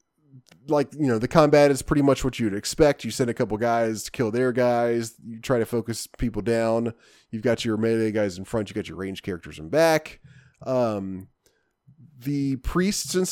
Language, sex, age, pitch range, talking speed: English, male, 30-49, 110-145 Hz, 200 wpm